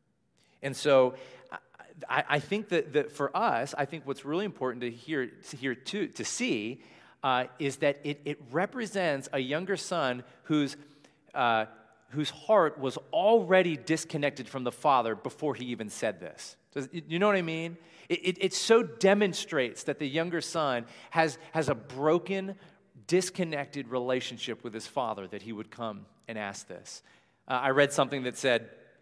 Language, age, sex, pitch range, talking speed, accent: English, 40-59, male, 125-165 Hz, 170 wpm, American